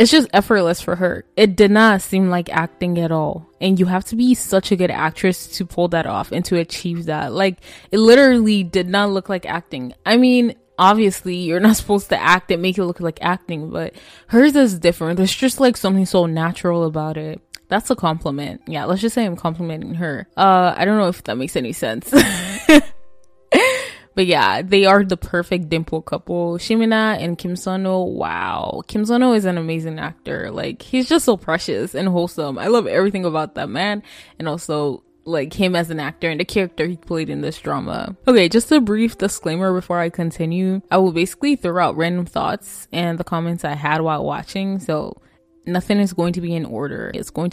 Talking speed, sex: 205 wpm, female